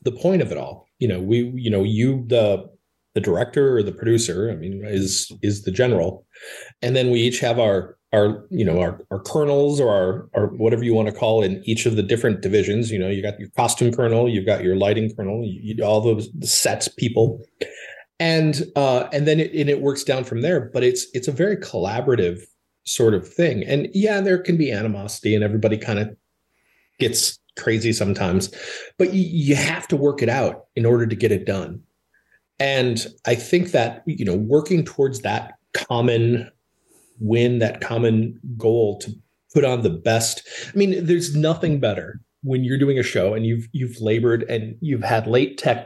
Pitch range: 110-140 Hz